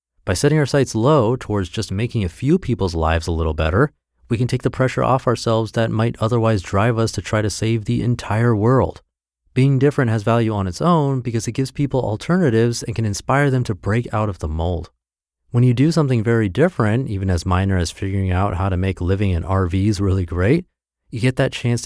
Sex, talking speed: male, 220 wpm